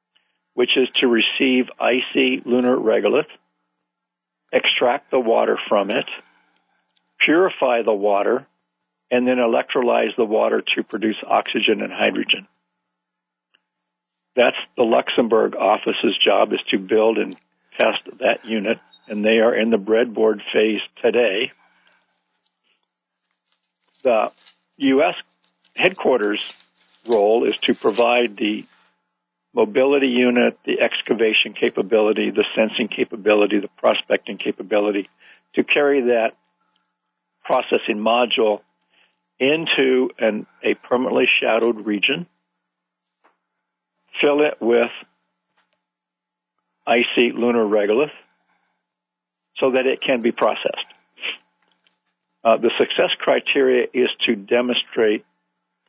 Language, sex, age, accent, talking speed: English, male, 60-79, American, 100 wpm